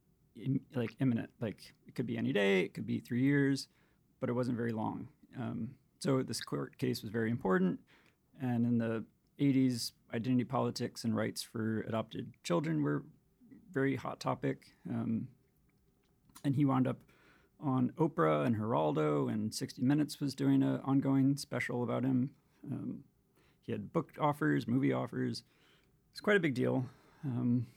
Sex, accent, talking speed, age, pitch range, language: male, American, 160 wpm, 30-49, 120-145 Hz, English